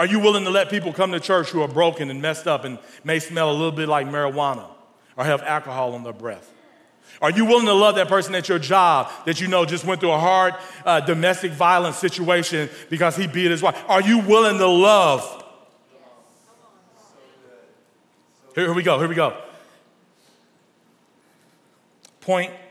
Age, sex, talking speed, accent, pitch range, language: 40-59, male, 180 wpm, American, 175-240 Hz, English